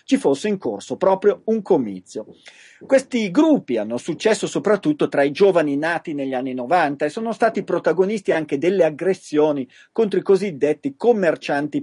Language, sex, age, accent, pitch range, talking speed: Italian, male, 40-59, native, 135-195 Hz, 150 wpm